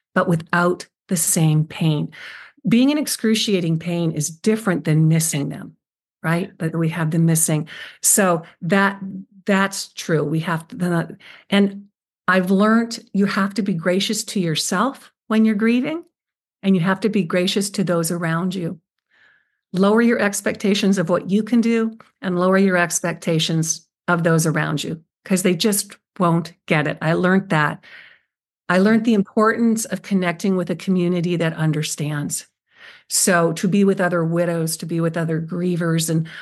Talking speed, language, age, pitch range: 160 wpm, English, 50-69, 170-215 Hz